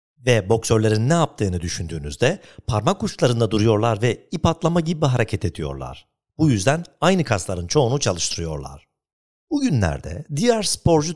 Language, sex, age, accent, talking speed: Turkish, male, 50-69, native, 125 wpm